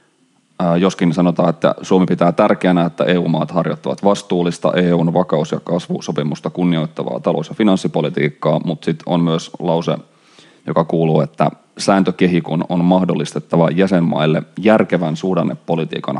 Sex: male